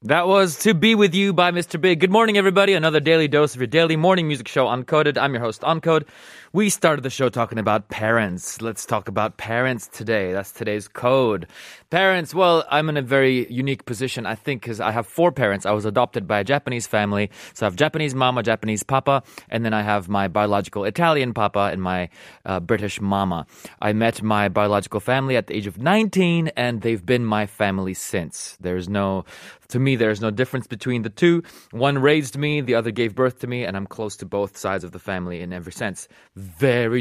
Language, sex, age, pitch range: Korean, male, 20-39, 100-135 Hz